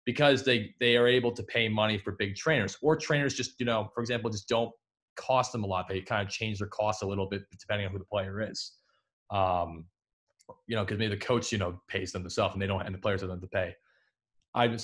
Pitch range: 100-130 Hz